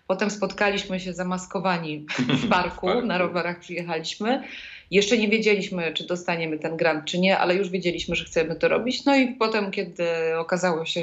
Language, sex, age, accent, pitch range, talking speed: Polish, female, 20-39, native, 175-200 Hz, 170 wpm